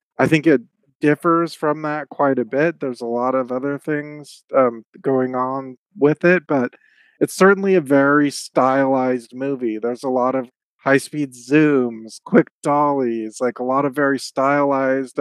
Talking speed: 160 wpm